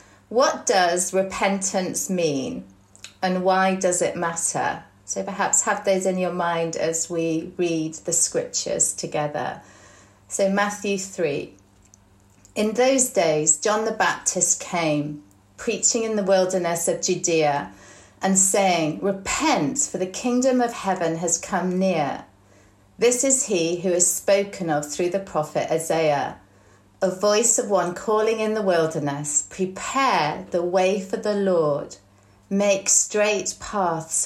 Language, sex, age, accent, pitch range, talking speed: English, female, 40-59, British, 150-195 Hz, 135 wpm